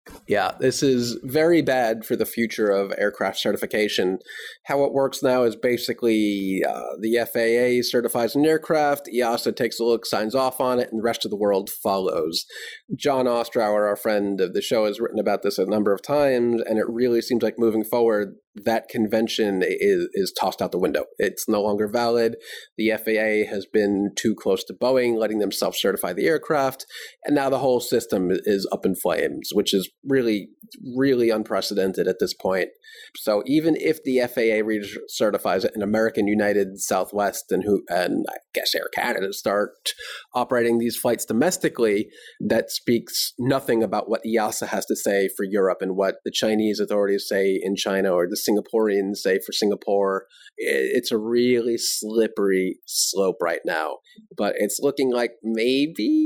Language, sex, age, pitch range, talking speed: English, male, 30-49, 105-140 Hz, 175 wpm